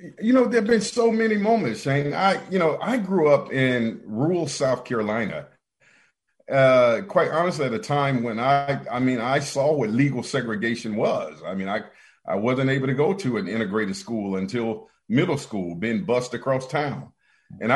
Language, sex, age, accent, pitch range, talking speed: English, male, 40-59, American, 130-185 Hz, 185 wpm